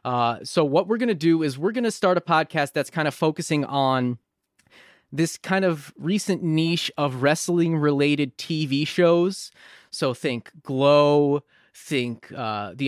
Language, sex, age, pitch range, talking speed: English, male, 20-39, 125-155 Hz, 160 wpm